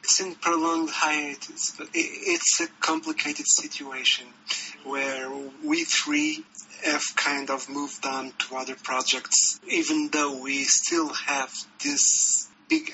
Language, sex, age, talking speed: English, male, 30-49, 125 wpm